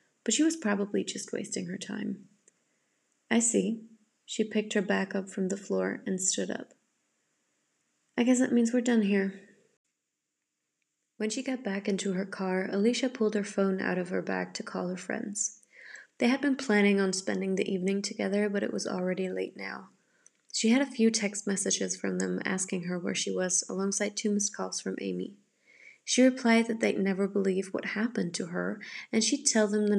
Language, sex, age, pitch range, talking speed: English, female, 20-39, 195-230 Hz, 190 wpm